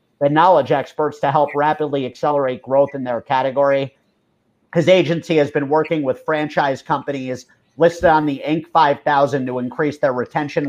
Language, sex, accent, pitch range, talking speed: English, male, American, 130-155 Hz, 155 wpm